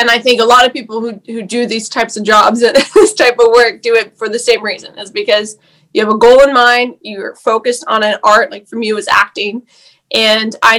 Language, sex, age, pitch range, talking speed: English, female, 20-39, 205-235 Hz, 255 wpm